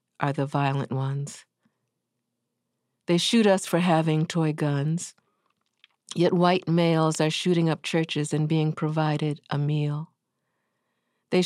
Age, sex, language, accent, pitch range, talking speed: 50-69, female, English, American, 145-170 Hz, 125 wpm